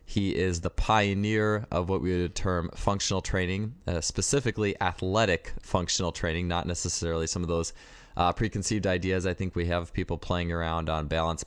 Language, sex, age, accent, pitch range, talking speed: English, male, 20-39, American, 85-105 Hz, 180 wpm